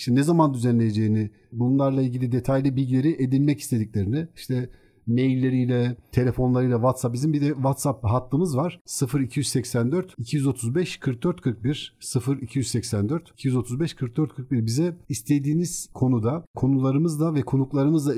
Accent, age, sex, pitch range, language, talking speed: native, 50-69, male, 125-155 Hz, Turkish, 105 wpm